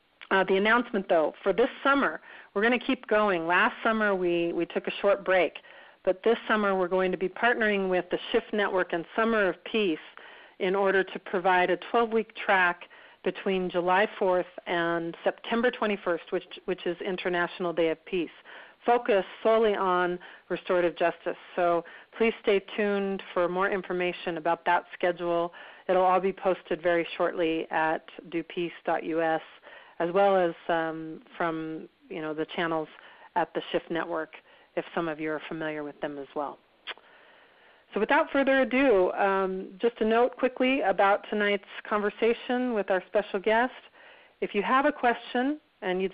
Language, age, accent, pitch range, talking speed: English, 40-59, American, 175-220 Hz, 165 wpm